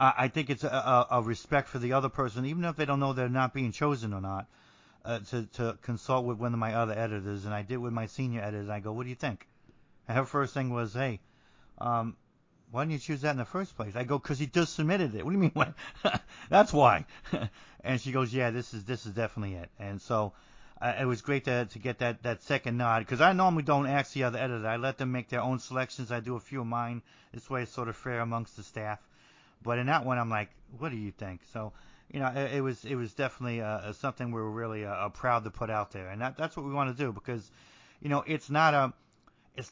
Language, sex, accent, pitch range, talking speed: English, male, American, 115-140 Hz, 260 wpm